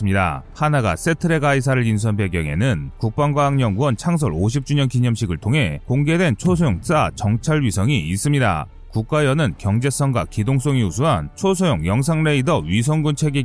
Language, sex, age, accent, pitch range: Korean, male, 30-49, native, 110-150 Hz